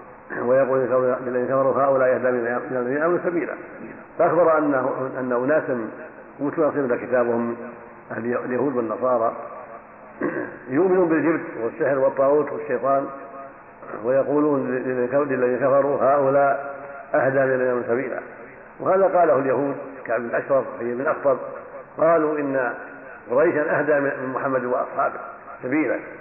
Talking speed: 105 wpm